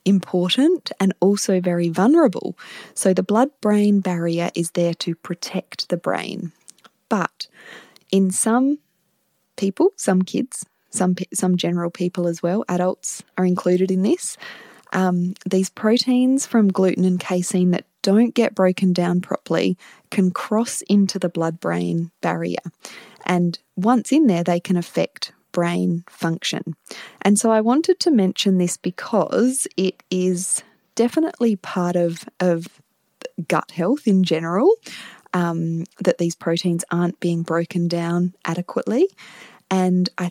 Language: English